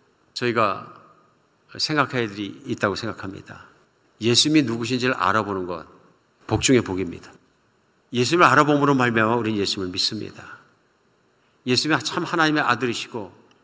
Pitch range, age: 110-140 Hz, 50-69